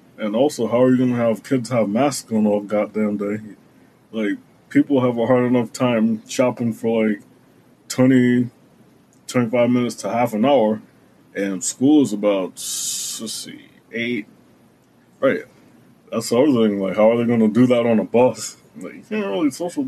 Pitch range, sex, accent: 105-125 Hz, male, American